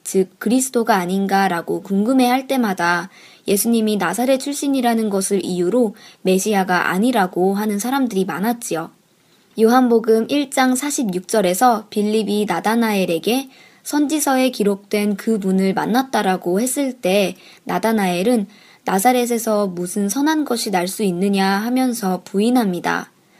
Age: 20-39